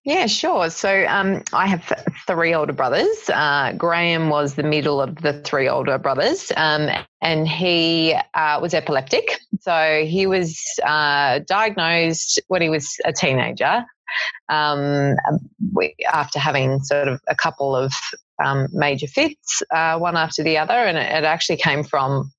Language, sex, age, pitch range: English, female, 30-49, 145-185 Hz